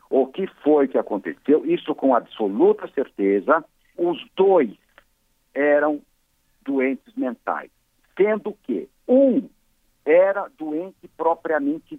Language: Portuguese